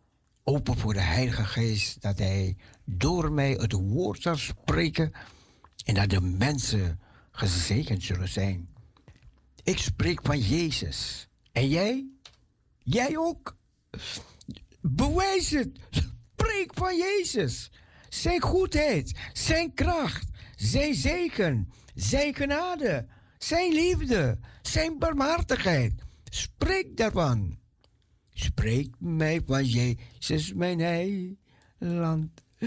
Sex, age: male, 60-79